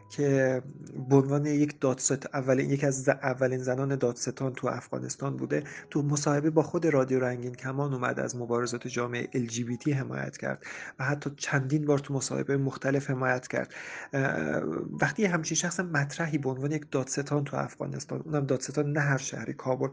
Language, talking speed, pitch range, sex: English, 170 wpm, 130-150 Hz, male